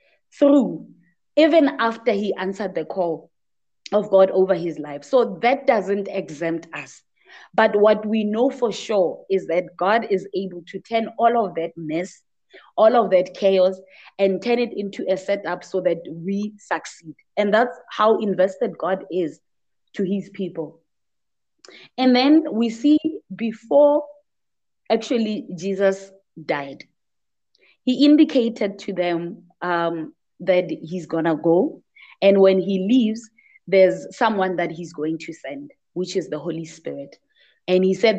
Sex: female